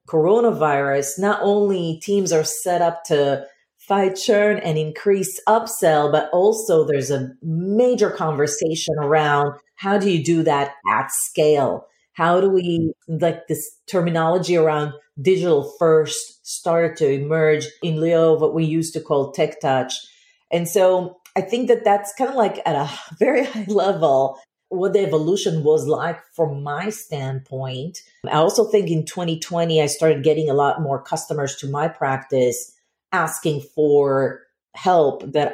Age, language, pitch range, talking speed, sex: 40-59, English, 145-185 Hz, 150 wpm, female